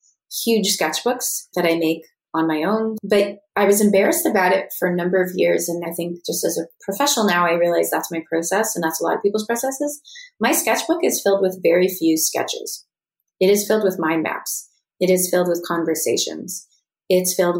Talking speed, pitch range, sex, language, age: 205 wpm, 175-225 Hz, female, English, 30-49